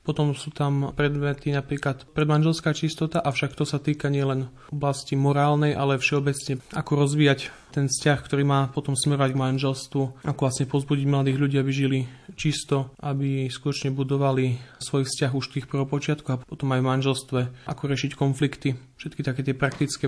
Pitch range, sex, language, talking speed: 135-150 Hz, male, Slovak, 160 wpm